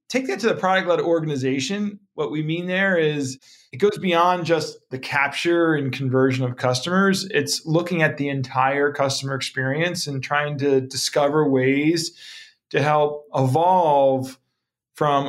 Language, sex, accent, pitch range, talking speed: English, male, American, 130-155 Hz, 150 wpm